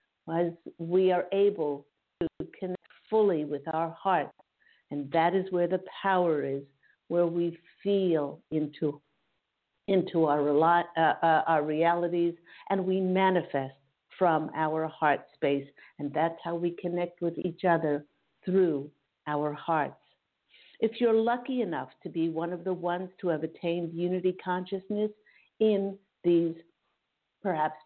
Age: 50-69